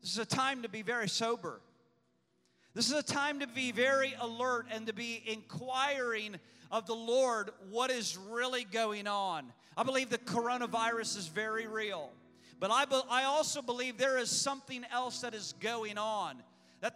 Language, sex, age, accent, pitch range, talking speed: English, male, 40-59, American, 220-280 Hz, 175 wpm